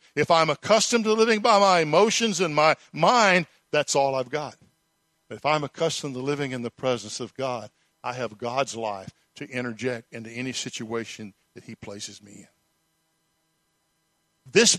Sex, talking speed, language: male, 160 wpm, English